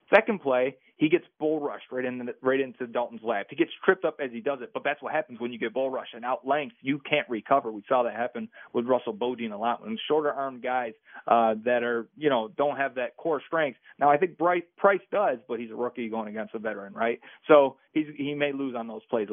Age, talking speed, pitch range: 30-49, 250 wpm, 120-150 Hz